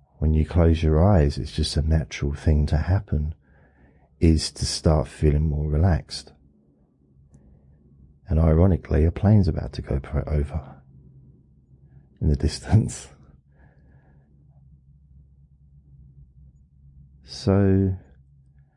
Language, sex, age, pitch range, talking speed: English, male, 40-59, 70-80 Hz, 95 wpm